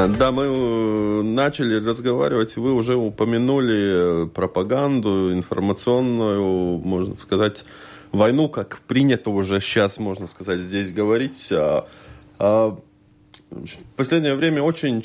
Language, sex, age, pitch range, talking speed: Russian, male, 20-39, 95-125 Hz, 95 wpm